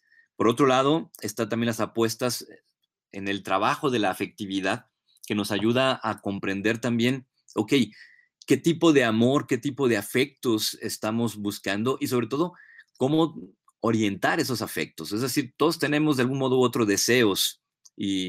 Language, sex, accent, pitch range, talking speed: Spanish, male, Mexican, 110-145 Hz, 160 wpm